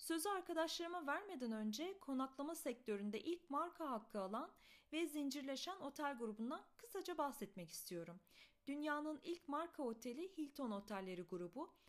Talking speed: 120 wpm